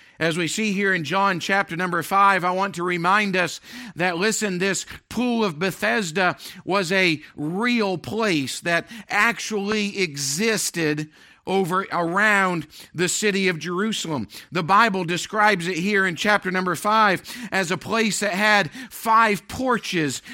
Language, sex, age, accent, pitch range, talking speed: English, male, 50-69, American, 170-210 Hz, 145 wpm